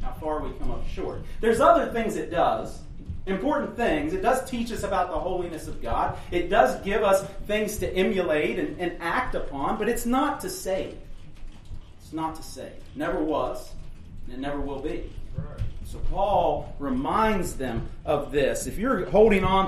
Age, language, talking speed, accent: 40-59, English, 180 wpm, American